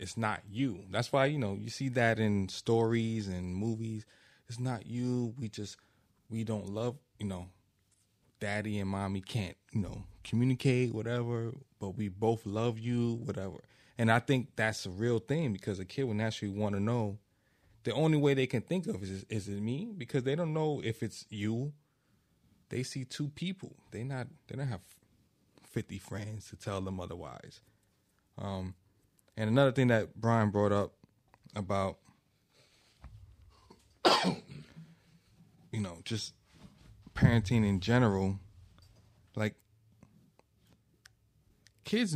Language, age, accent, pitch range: English, 20-39, American, 105-130 Hz